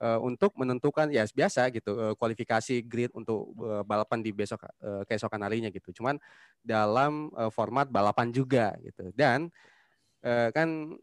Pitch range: 105-130 Hz